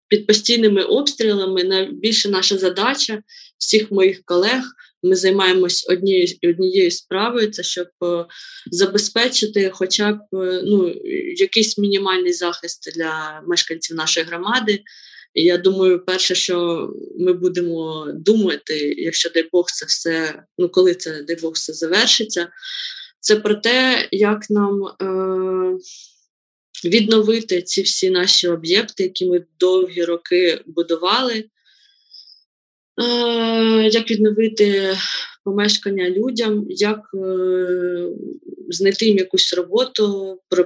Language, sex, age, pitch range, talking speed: Ukrainian, female, 20-39, 180-225 Hz, 105 wpm